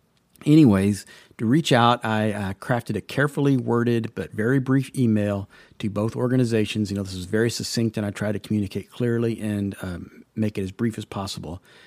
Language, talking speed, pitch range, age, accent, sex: English, 185 wpm, 105-125 Hz, 40-59, American, male